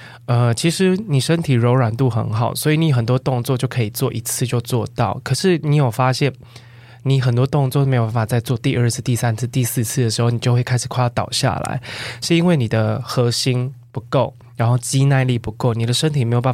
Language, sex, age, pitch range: Chinese, male, 20-39, 120-145 Hz